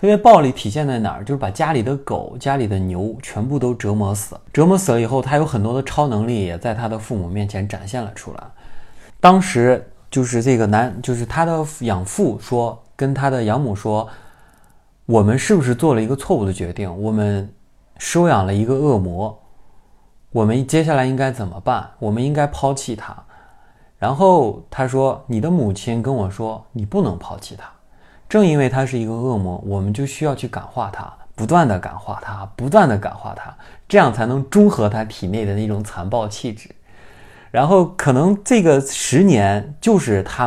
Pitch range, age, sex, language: 105-135 Hz, 30-49, male, Chinese